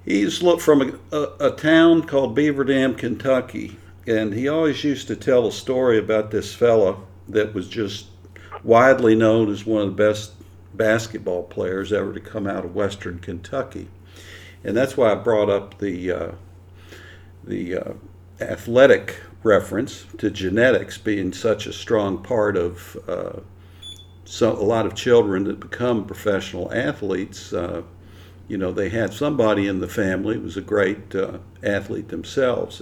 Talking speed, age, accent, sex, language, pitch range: 155 wpm, 60-79, American, male, English, 95-120 Hz